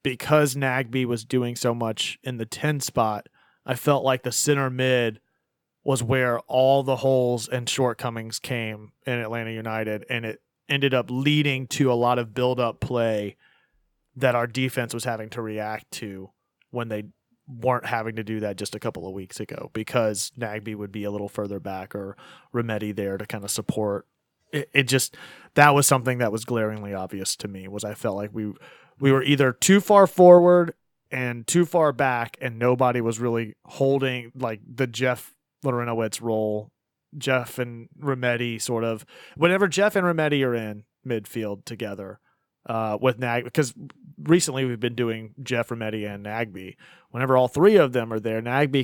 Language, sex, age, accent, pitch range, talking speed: English, male, 30-49, American, 110-135 Hz, 175 wpm